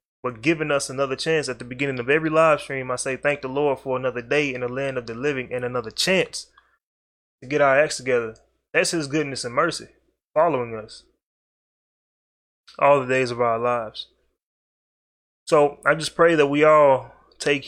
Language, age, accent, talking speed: English, 20-39, American, 185 wpm